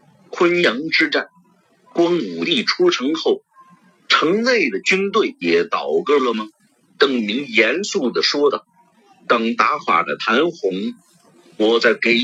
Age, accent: 50-69, native